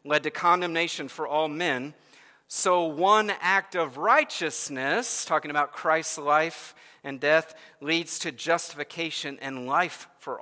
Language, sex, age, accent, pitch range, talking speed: English, male, 50-69, American, 130-180 Hz, 130 wpm